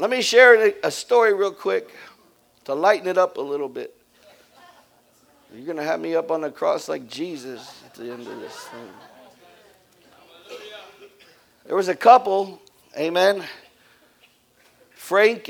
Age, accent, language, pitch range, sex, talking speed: 50-69, American, English, 160-250 Hz, male, 145 wpm